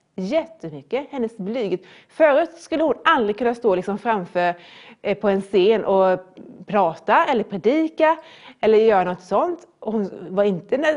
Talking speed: 130 wpm